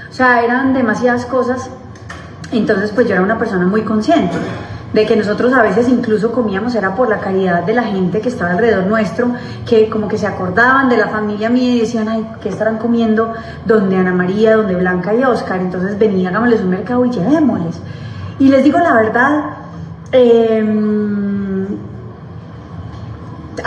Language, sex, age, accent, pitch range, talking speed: Spanish, female, 30-49, Colombian, 195-235 Hz, 165 wpm